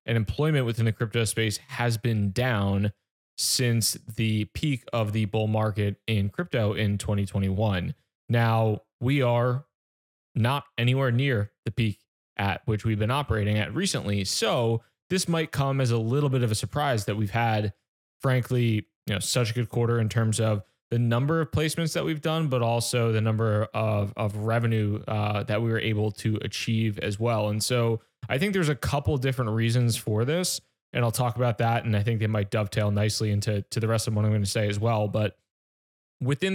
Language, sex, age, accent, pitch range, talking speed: English, male, 20-39, American, 105-125 Hz, 195 wpm